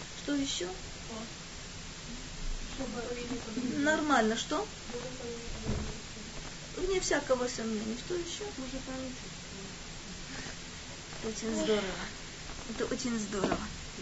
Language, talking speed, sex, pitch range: Russian, 60 wpm, female, 250-315 Hz